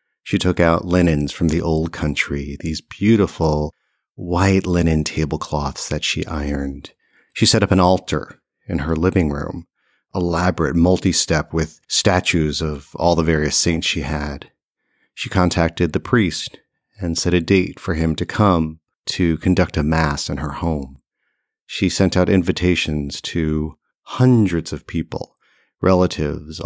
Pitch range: 80-95 Hz